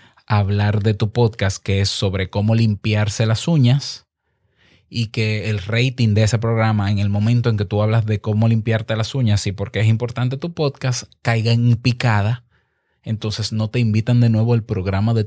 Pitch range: 105-135 Hz